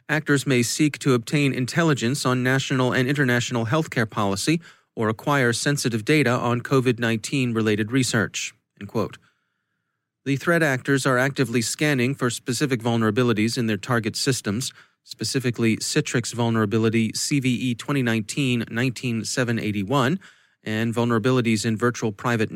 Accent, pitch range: American, 110-135 Hz